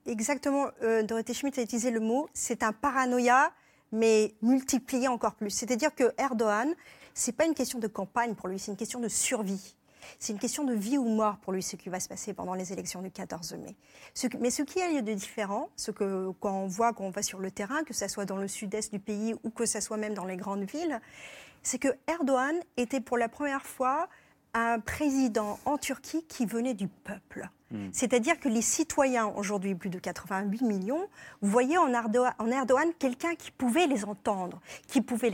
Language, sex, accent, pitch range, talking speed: French, female, French, 205-265 Hz, 205 wpm